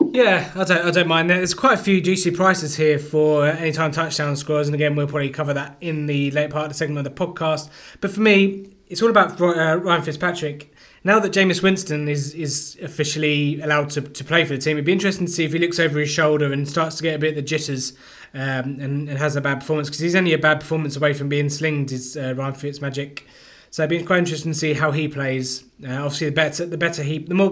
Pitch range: 140-160 Hz